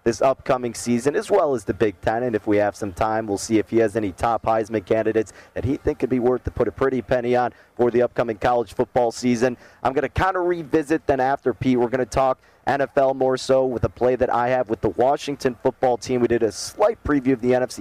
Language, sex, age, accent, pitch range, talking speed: English, male, 30-49, American, 105-130 Hz, 260 wpm